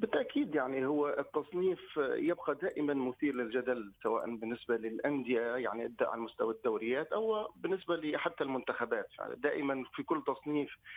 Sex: male